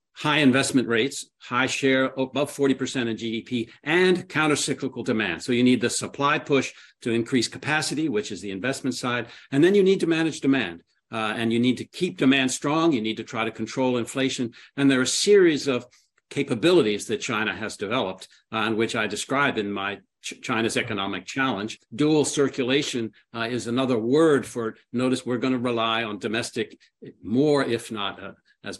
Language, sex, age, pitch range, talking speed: English, male, 60-79, 115-145 Hz, 190 wpm